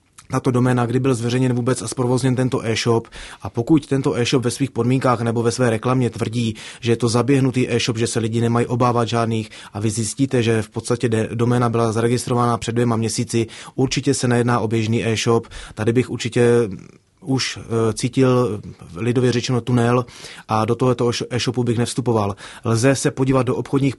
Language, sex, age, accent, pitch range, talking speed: Czech, male, 30-49, native, 115-130 Hz, 180 wpm